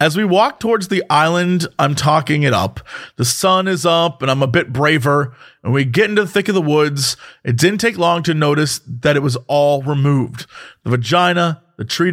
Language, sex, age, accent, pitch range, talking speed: English, male, 30-49, American, 135-170 Hz, 215 wpm